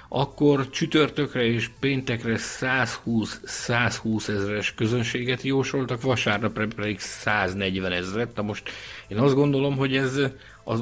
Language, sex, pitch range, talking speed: Hungarian, male, 105-130 Hz, 110 wpm